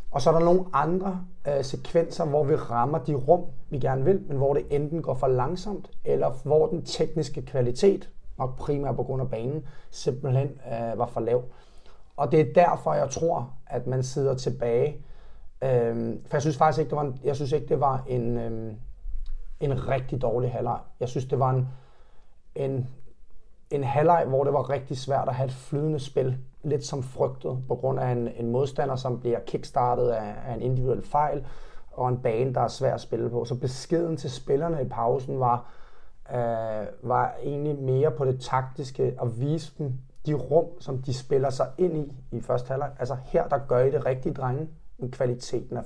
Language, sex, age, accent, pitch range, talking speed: Danish, male, 30-49, native, 125-150 Hz, 200 wpm